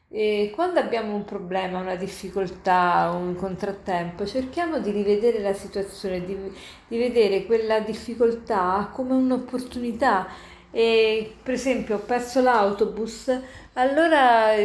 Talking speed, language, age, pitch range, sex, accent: 105 wpm, Italian, 40-59, 185-235 Hz, female, native